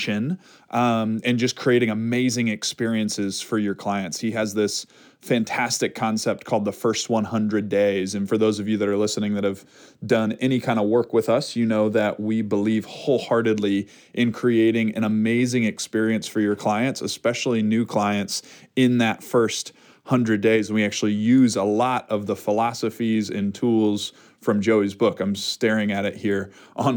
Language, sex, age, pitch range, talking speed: English, male, 20-39, 105-120 Hz, 170 wpm